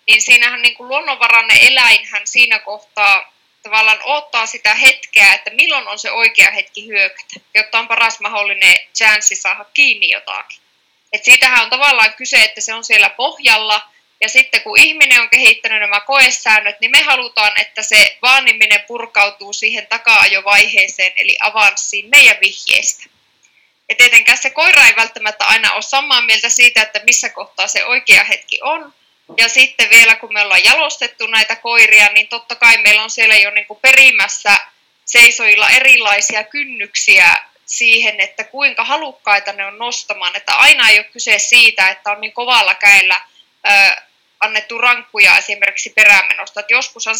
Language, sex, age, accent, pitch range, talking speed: Finnish, female, 20-39, native, 210-245 Hz, 155 wpm